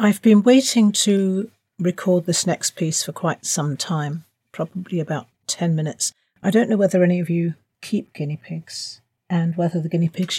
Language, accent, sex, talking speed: English, British, female, 180 wpm